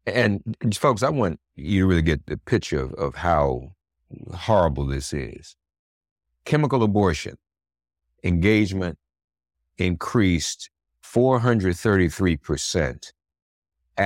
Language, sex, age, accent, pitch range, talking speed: English, male, 50-69, American, 75-105 Hz, 90 wpm